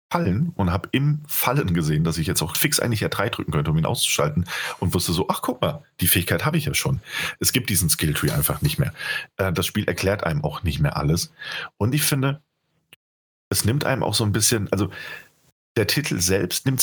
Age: 40-59